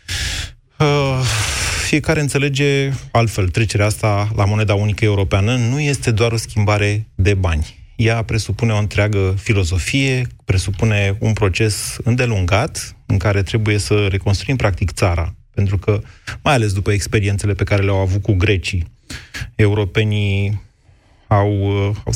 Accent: native